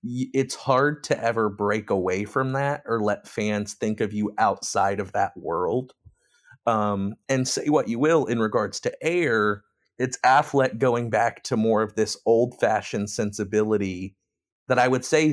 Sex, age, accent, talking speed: male, 30-49, American, 170 wpm